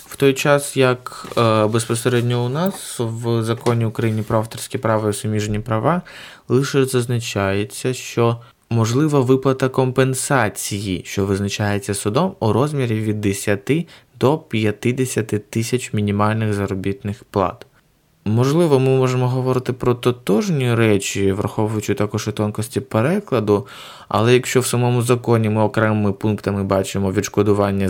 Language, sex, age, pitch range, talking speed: Ukrainian, male, 20-39, 100-125 Hz, 125 wpm